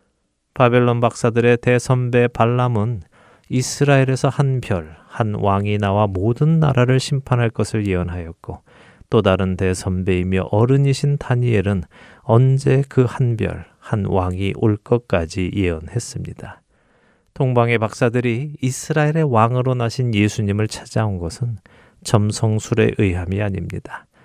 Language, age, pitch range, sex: Korean, 40-59, 95-125 Hz, male